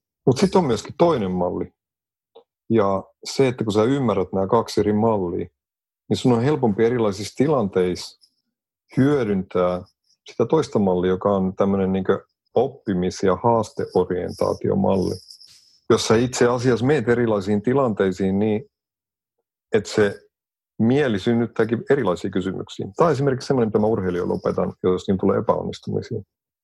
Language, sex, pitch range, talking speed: Finnish, male, 100-125 Hz, 125 wpm